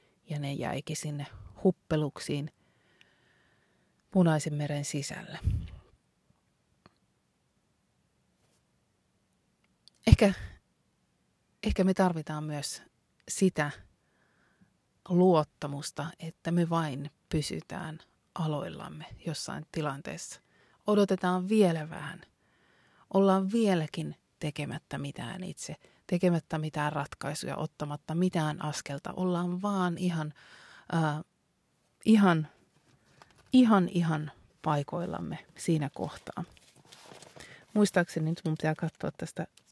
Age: 30-49